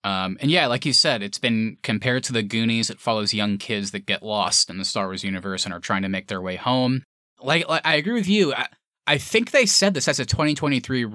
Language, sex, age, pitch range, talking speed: English, male, 20-39, 105-135 Hz, 255 wpm